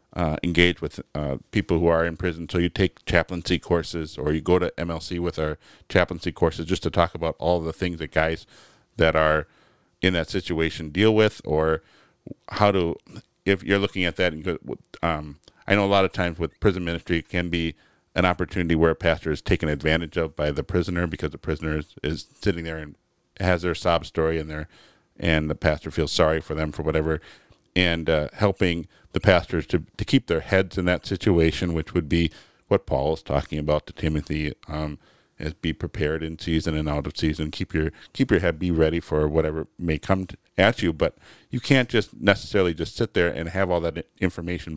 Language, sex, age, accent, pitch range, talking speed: English, male, 50-69, American, 80-90 Hz, 210 wpm